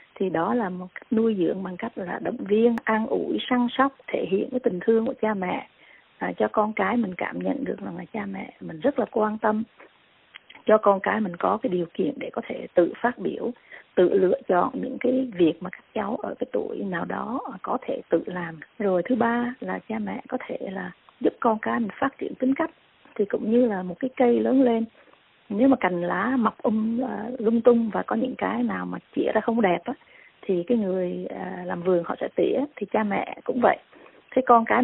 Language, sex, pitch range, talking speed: Vietnamese, female, 195-245 Hz, 235 wpm